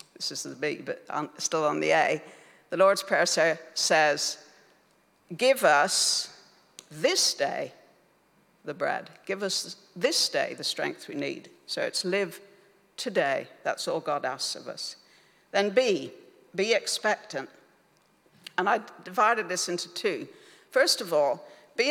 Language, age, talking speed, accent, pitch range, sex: English, 60-79, 140 wpm, British, 175-245 Hz, female